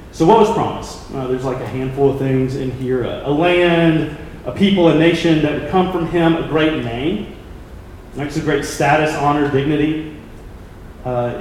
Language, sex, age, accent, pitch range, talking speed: English, male, 30-49, American, 120-165 Hz, 185 wpm